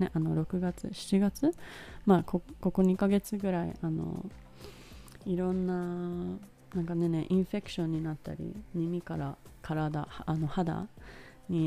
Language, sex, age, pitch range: Japanese, female, 20-39, 160-185 Hz